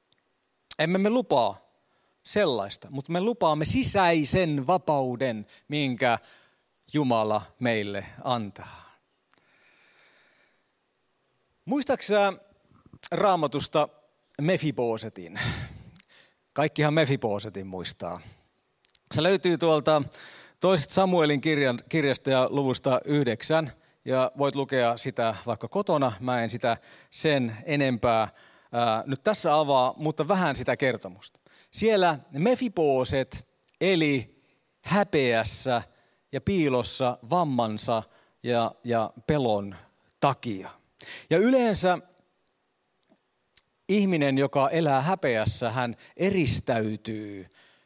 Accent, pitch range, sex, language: native, 115-160 Hz, male, Finnish